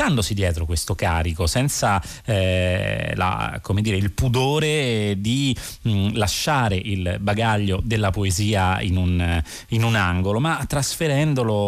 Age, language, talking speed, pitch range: 30-49, Italian, 125 wpm, 90-120 Hz